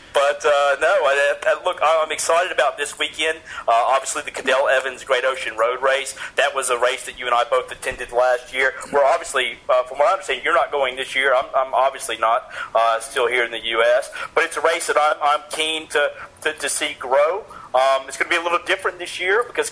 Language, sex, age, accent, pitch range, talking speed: English, male, 40-59, American, 140-160 Hz, 235 wpm